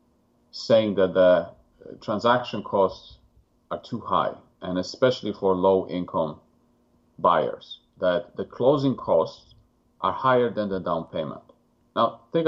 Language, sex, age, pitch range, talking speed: English, male, 40-59, 95-120 Hz, 120 wpm